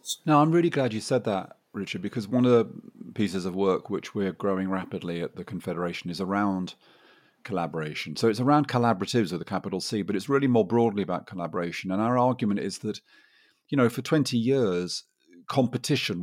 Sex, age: male, 40-59